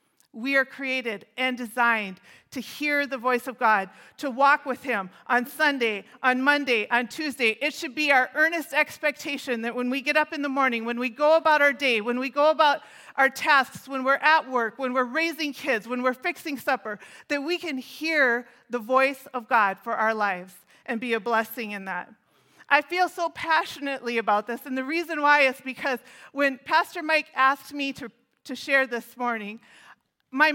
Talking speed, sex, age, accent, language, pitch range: 195 wpm, female, 40-59, American, English, 235-285 Hz